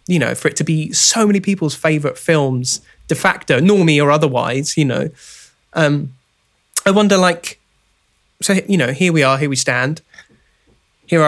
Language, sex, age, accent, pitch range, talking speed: English, male, 20-39, British, 135-170 Hz, 170 wpm